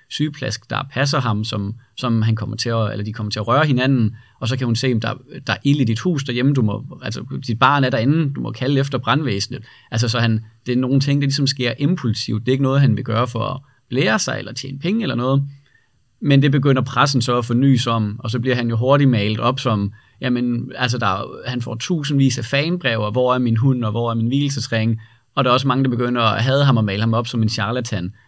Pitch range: 115-135 Hz